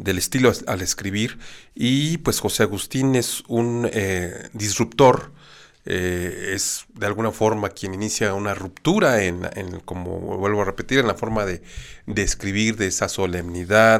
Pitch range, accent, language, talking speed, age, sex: 95-120 Hz, Mexican, Spanish, 155 wpm, 40-59, male